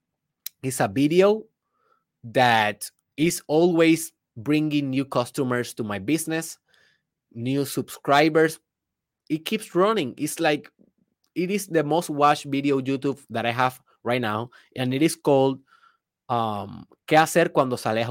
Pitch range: 125-160 Hz